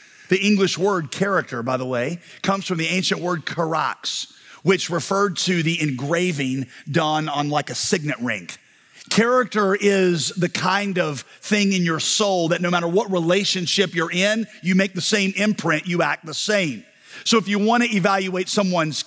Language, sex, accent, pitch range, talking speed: English, male, American, 160-205 Hz, 175 wpm